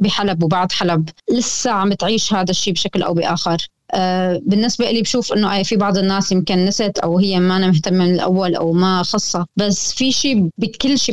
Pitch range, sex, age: 175-205 Hz, female, 20-39